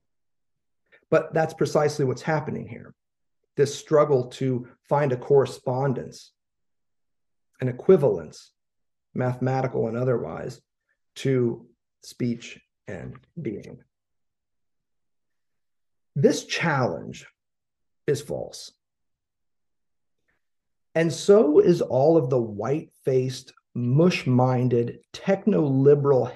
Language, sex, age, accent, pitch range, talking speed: English, male, 50-69, American, 125-180 Hz, 75 wpm